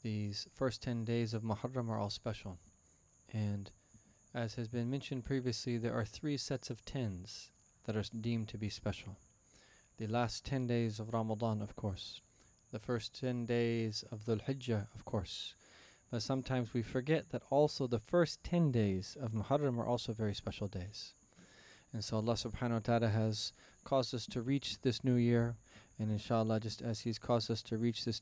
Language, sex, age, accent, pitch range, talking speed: English, male, 20-39, American, 110-125 Hz, 180 wpm